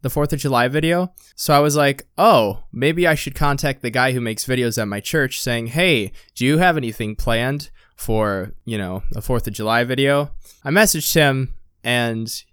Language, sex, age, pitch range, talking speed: English, male, 20-39, 105-130 Hz, 195 wpm